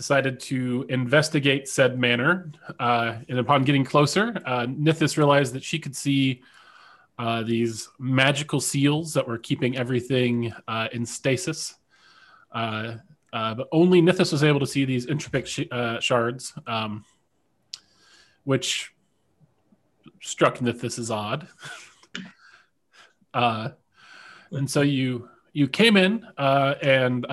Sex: male